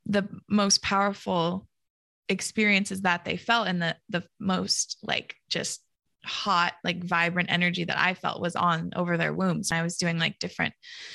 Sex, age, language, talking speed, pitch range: female, 20-39, English, 160 wpm, 175-200 Hz